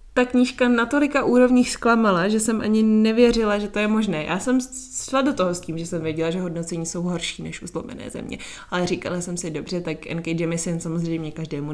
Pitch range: 170-210 Hz